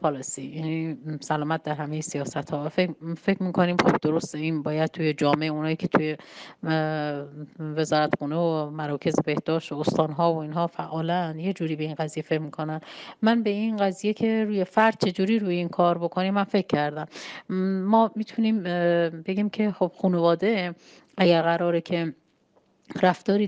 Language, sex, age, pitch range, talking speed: Persian, female, 30-49, 160-190 Hz, 150 wpm